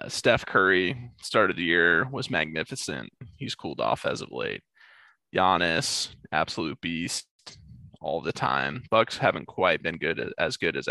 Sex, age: male, 20-39